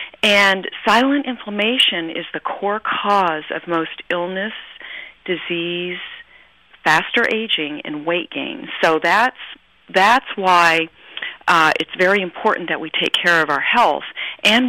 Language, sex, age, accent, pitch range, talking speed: English, female, 40-59, American, 160-210 Hz, 130 wpm